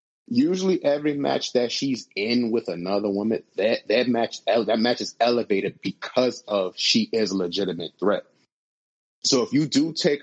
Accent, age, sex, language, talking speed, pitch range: American, 30-49, male, English, 160 wpm, 100-130 Hz